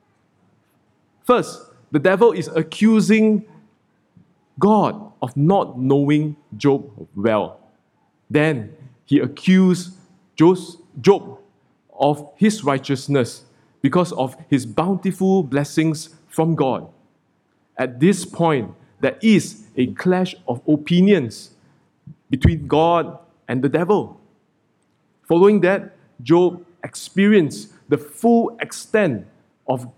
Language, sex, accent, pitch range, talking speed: English, male, Malaysian, 135-185 Hz, 95 wpm